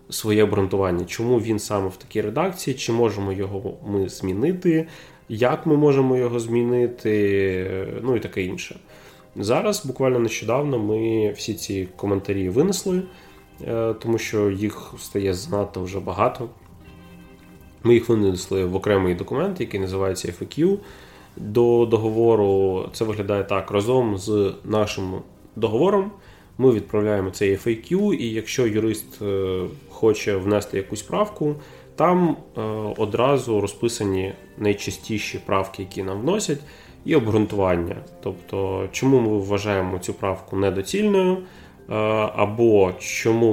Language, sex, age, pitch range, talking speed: Ukrainian, male, 20-39, 95-120 Hz, 115 wpm